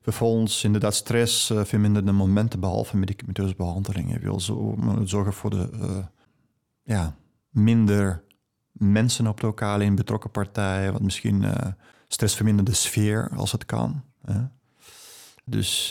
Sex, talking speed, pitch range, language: male, 130 wpm, 100-115 Hz, Dutch